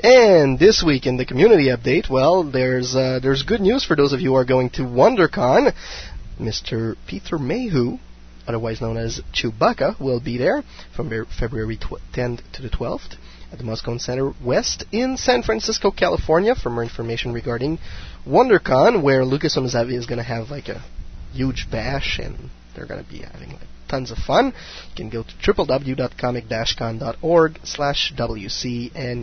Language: English